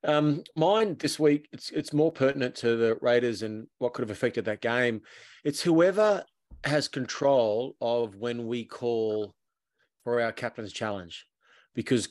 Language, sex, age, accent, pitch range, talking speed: English, male, 30-49, Australian, 115-150 Hz, 155 wpm